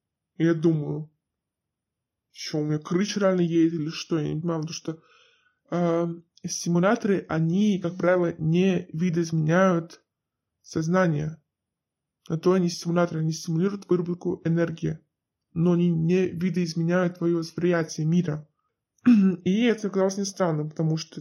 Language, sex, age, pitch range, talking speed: Russian, female, 20-39, 160-195 Hz, 130 wpm